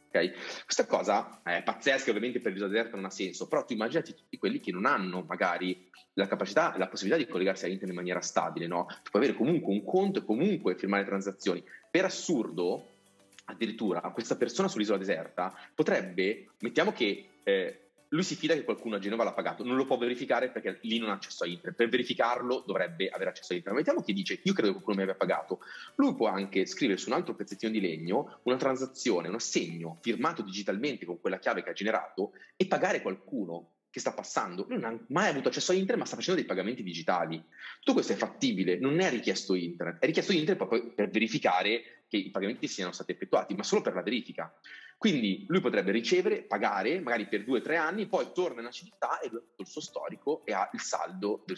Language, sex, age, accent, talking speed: Italian, male, 30-49, native, 215 wpm